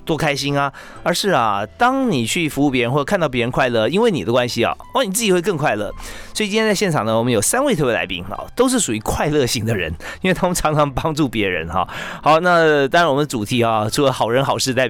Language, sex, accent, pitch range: Chinese, male, native, 115-150 Hz